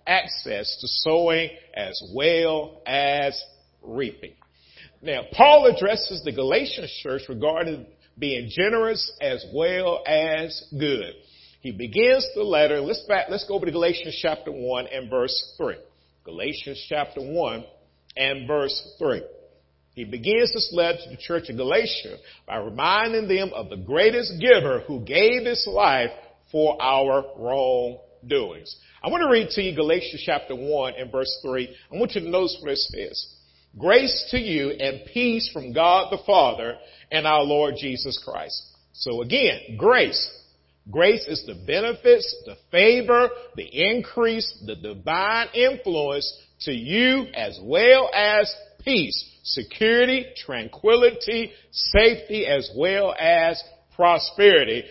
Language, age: English, 50-69